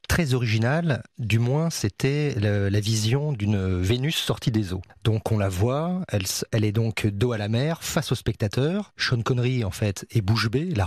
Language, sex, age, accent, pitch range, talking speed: French, male, 40-59, French, 105-135 Hz, 200 wpm